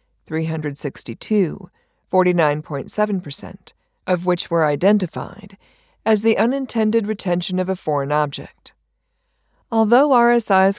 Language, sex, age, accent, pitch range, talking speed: English, female, 50-69, American, 165-210 Hz, 90 wpm